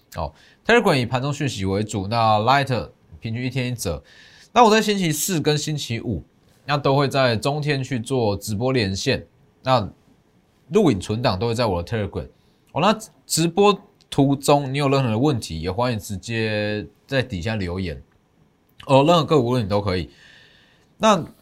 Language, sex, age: Chinese, male, 20-39